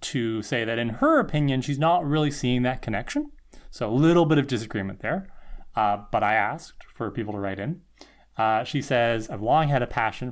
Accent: American